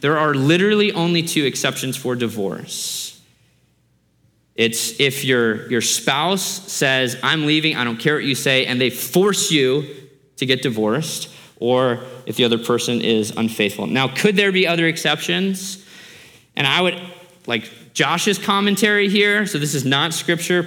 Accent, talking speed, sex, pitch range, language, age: American, 155 wpm, male, 125-165 Hz, English, 20-39